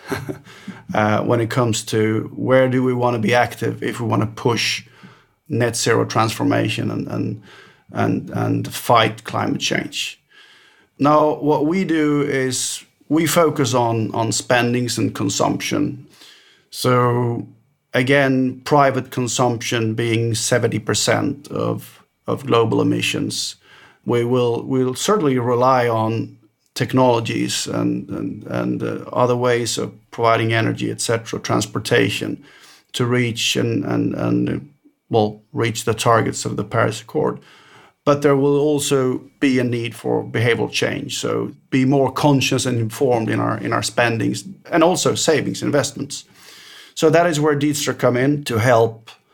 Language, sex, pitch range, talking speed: English, male, 115-140 Hz, 140 wpm